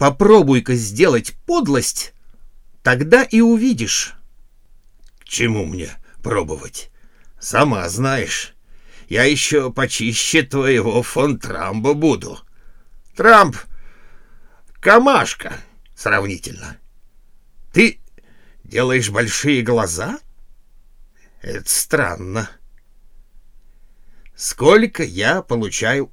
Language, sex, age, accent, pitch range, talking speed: Russian, male, 60-79, native, 105-135 Hz, 70 wpm